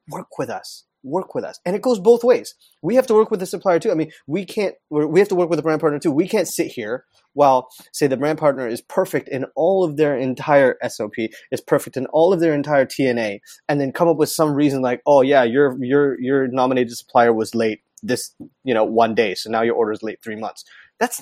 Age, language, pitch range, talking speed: 30-49, English, 120-155 Hz, 250 wpm